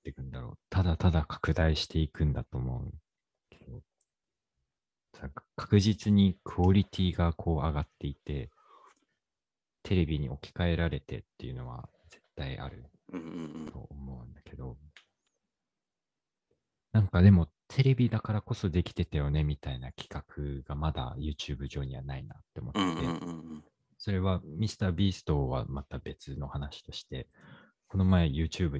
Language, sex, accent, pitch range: Japanese, male, native, 70-95 Hz